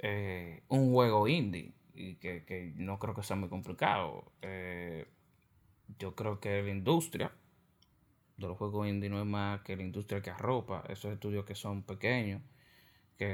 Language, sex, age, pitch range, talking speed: Spanish, male, 20-39, 95-110 Hz, 165 wpm